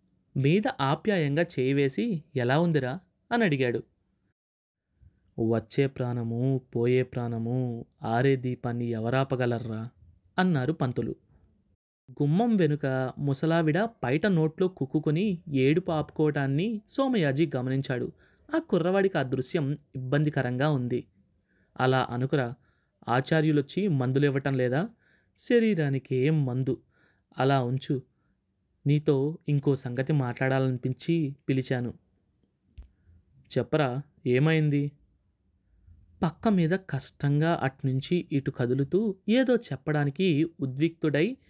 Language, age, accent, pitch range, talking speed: Telugu, 20-39, native, 125-155 Hz, 80 wpm